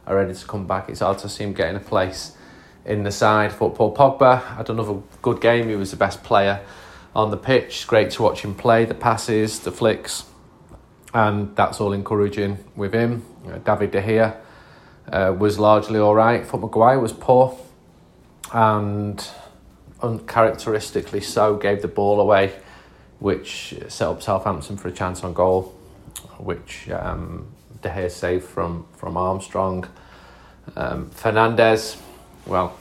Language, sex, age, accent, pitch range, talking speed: English, male, 30-49, British, 90-105 Hz, 155 wpm